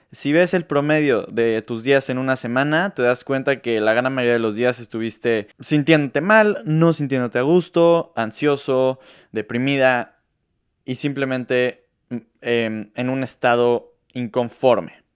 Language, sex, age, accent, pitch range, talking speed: Spanish, male, 20-39, Mexican, 115-150 Hz, 145 wpm